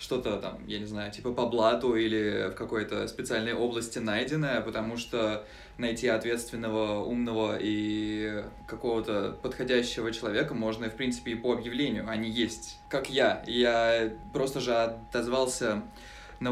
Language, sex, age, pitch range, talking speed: Russian, male, 20-39, 115-135 Hz, 140 wpm